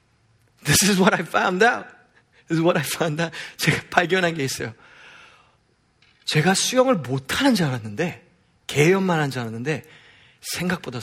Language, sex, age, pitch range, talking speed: English, male, 30-49, 150-225 Hz, 145 wpm